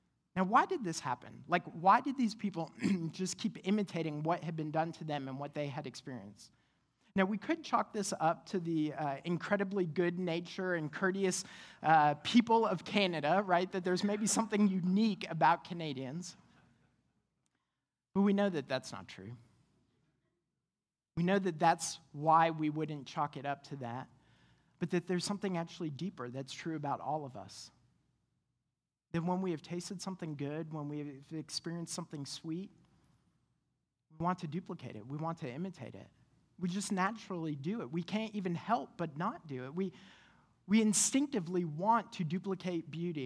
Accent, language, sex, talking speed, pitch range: American, English, male, 170 wpm, 145-195 Hz